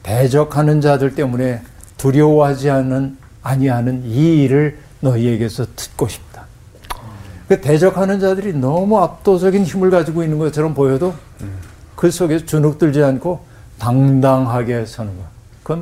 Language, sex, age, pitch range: Korean, male, 60-79, 115-155 Hz